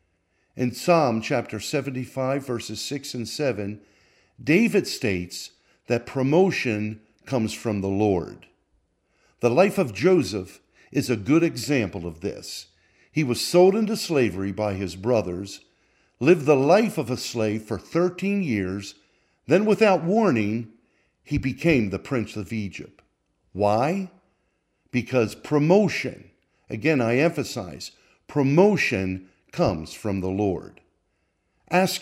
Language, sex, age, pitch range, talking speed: English, male, 50-69, 95-140 Hz, 120 wpm